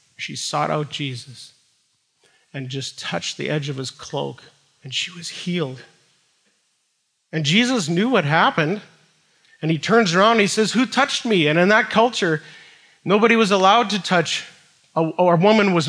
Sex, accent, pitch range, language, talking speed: male, American, 135-170 Hz, English, 165 wpm